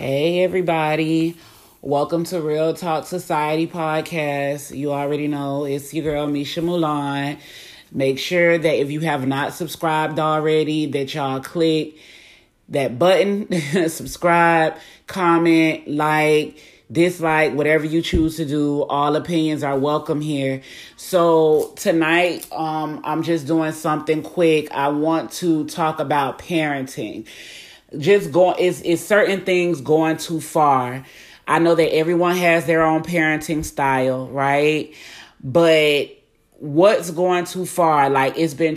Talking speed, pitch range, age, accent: 130 wpm, 145-170 Hz, 30-49, American